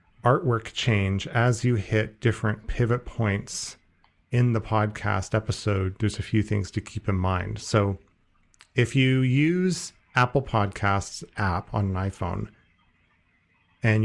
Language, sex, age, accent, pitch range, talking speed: English, male, 40-59, American, 100-115 Hz, 130 wpm